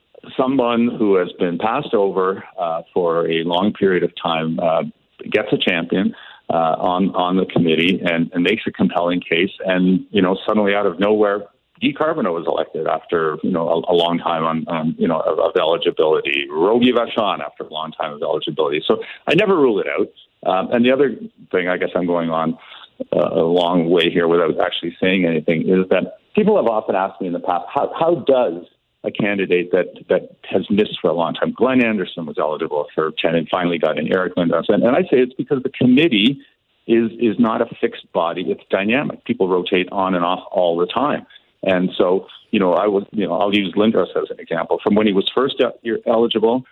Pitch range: 90-115 Hz